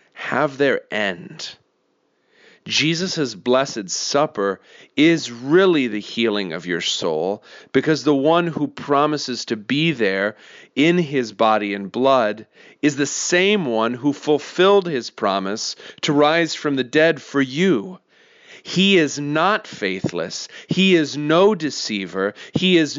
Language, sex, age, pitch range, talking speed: English, male, 40-59, 120-175 Hz, 135 wpm